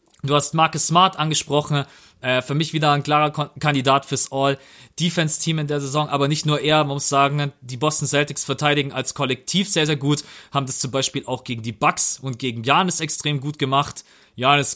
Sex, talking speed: male, 190 wpm